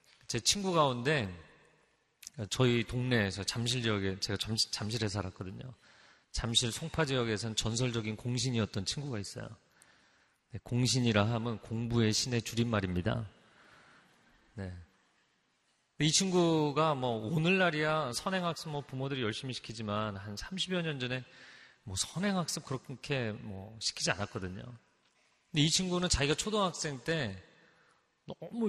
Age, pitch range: 30-49, 110-145 Hz